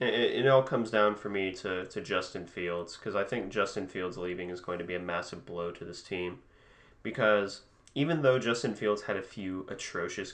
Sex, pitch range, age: male, 90-115 Hz, 30-49